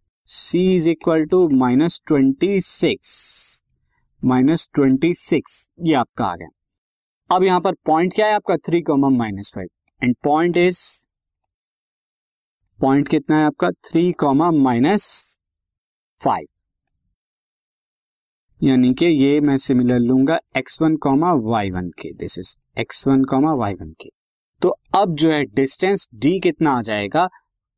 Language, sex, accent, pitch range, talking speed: Hindi, male, native, 125-170 Hz, 140 wpm